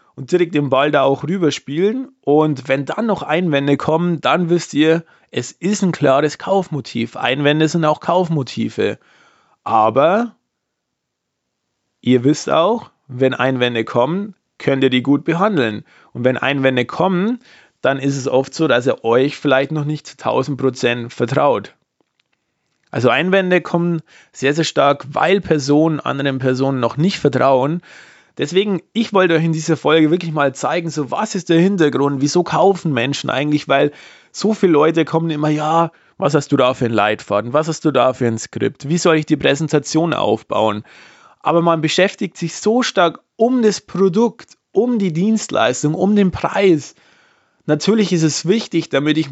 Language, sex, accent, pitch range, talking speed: German, male, German, 135-180 Hz, 165 wpm